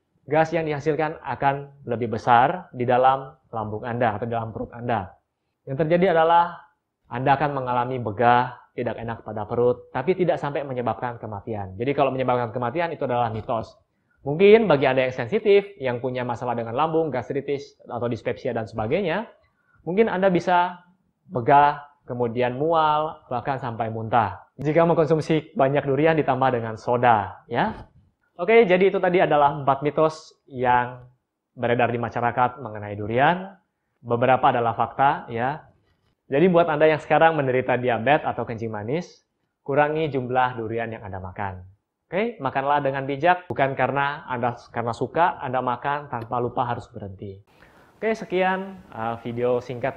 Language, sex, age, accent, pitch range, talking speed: Indonesian, male, 20-39, native, 120-155 Hz, 150 wpm